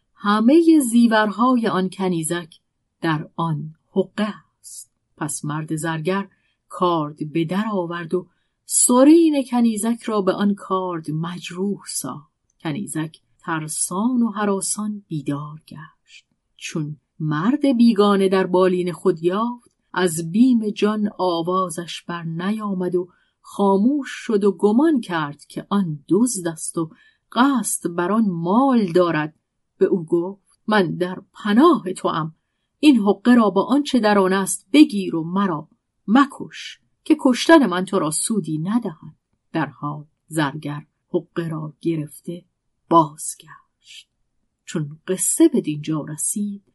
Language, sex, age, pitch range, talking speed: Persian, female, 40-59, 160-210 Hz, 125 wpm